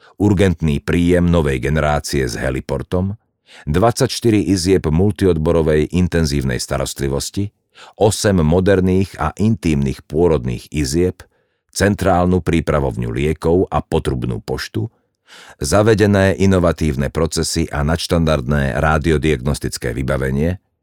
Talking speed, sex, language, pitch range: 85 wpm, male, Slovak, 75-95 Hz